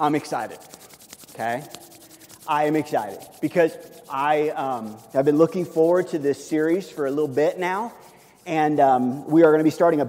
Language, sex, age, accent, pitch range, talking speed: English, male, 30-49, American, 145-170 Hz, 180 wpm